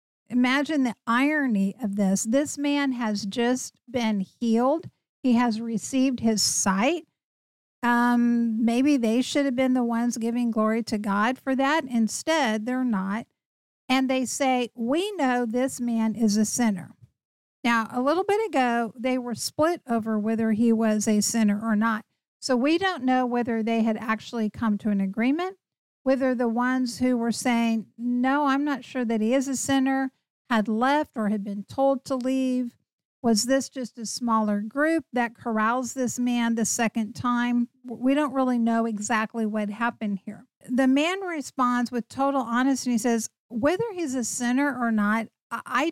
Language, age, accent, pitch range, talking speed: English, 50-69, American, 225-270 Hz, 170 wpm